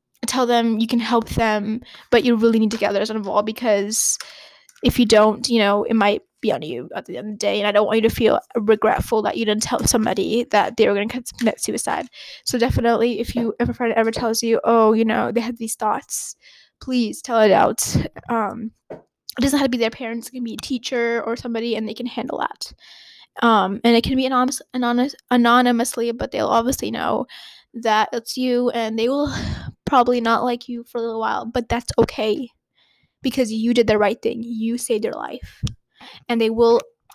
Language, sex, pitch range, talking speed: English, female, 225-245 Hz, 210 wpm